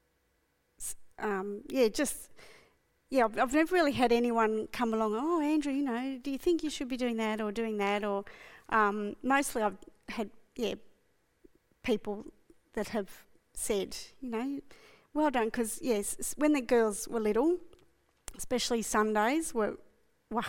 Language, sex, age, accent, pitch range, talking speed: English, female, 40-59, Australian, 215-245 Hz, 150 wpm